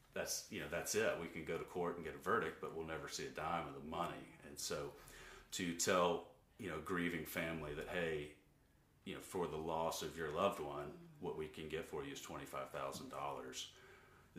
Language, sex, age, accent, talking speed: English, male, 30-49, American, 210 wpm